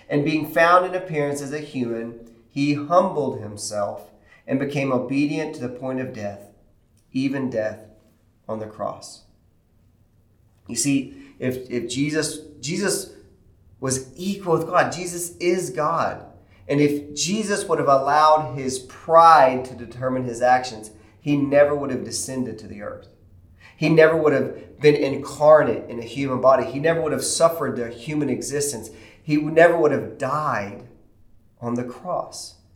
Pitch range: 110-140 Hz